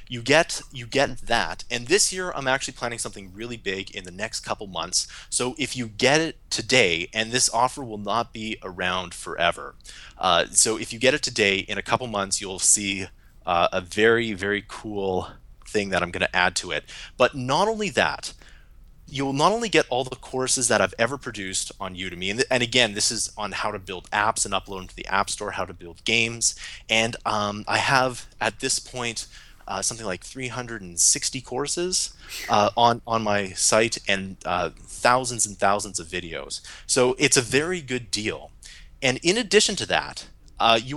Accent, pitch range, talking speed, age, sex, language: American, 100-130 Hz, 200 wpm, 30-49, male, English